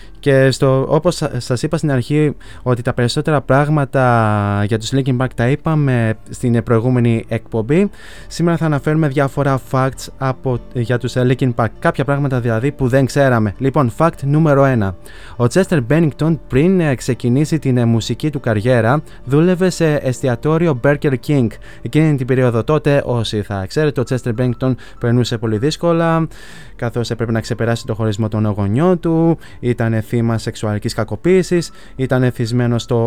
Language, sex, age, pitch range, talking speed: Greek, male, 20-39, 115-145 Hz, 150 wpm